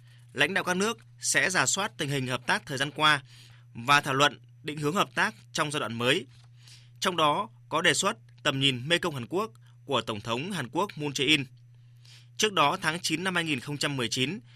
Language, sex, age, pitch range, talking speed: Vietnamese, male, 20-39, 120-160 Hz, 200 wpm